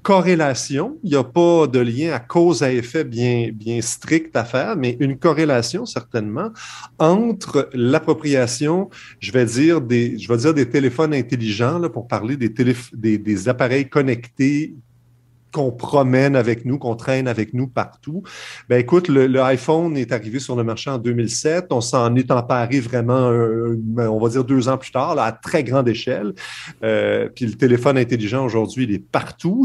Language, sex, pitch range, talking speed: French, male, 120-150 Hz, 180 wpm